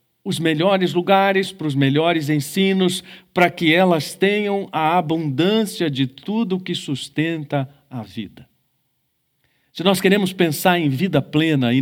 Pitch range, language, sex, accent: 125-160 Hz, Portuguese, male, Brazilian